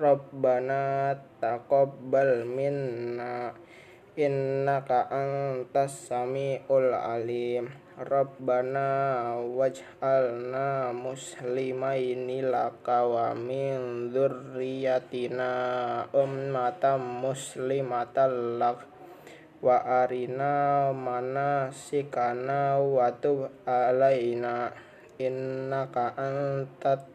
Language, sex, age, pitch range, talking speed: Indonesian, male, 20-39, 125-140 Hz, 50 wpm